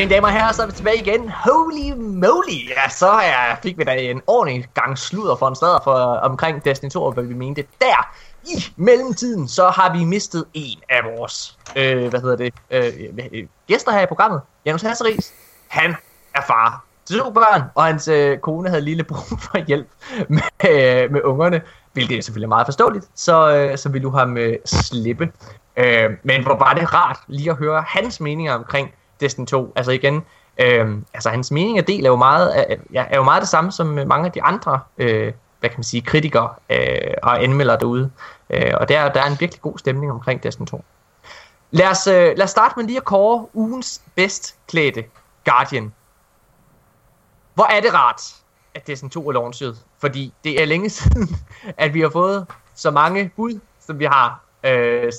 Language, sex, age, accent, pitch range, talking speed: Danish, male, 20-39, native, 125-185 Hz, 190 wpm